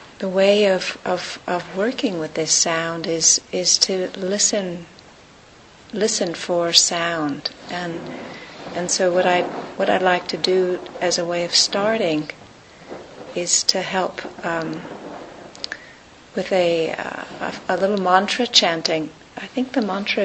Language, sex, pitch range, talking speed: English, female, 175-205 Hz, 135 wpm